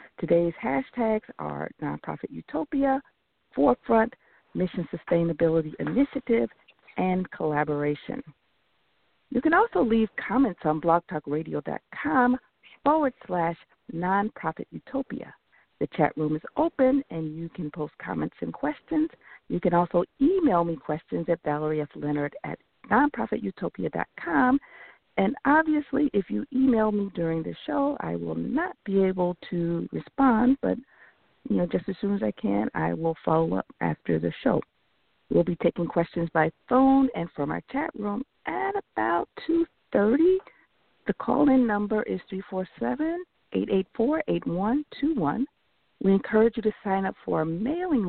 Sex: female